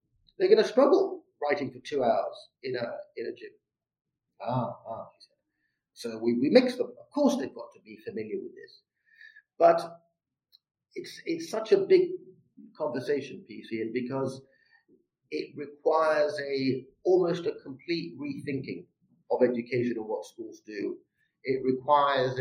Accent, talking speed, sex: British, 145 wpm, male